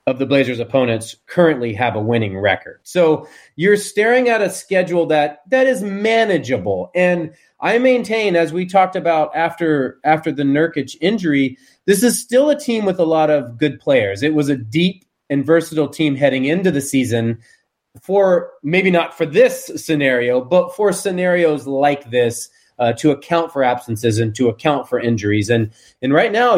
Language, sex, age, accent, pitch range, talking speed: English, male, 30-49, American, 130-180 Hz, 175 wpm